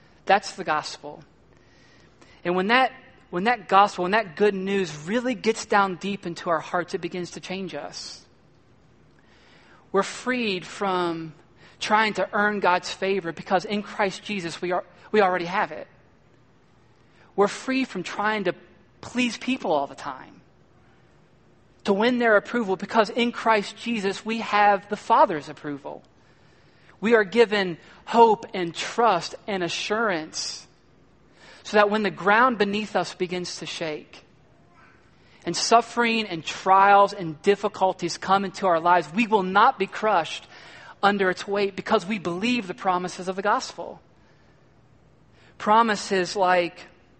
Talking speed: 140 wpm